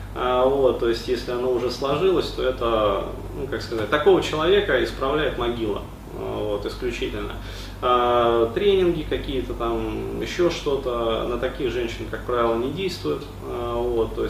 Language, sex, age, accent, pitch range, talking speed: Russian, male, 30-49, native, 110-135 Hz, 135 wpm